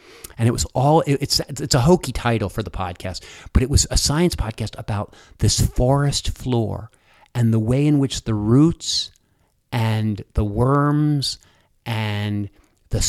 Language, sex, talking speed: English, male, 155 wpm